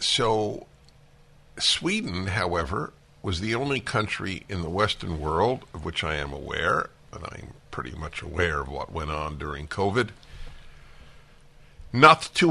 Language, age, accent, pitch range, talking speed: English, 60-79, American, 85-115 Hz, 140 wpm